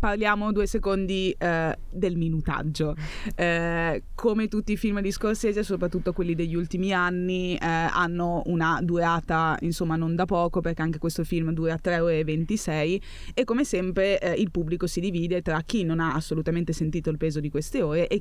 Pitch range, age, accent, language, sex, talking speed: 160-185 Hz, 20-39, native, Italian, female, 180 wpm